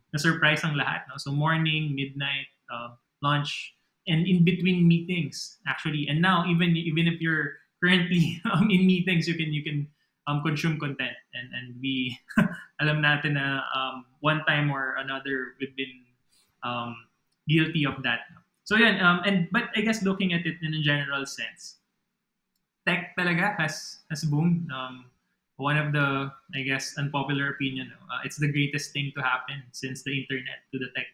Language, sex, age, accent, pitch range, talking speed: Filipino, male, 20-39, native, 135-165 Hz, 170 wpm